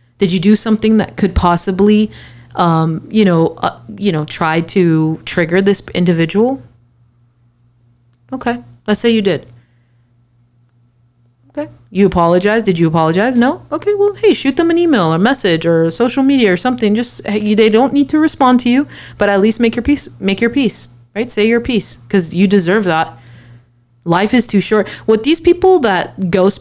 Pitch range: 160-220 Hz